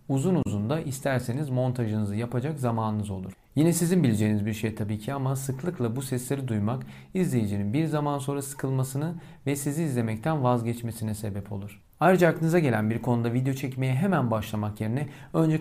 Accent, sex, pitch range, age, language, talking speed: native, male, 120-160 Hz, 40-59, Turkish, 160 wpm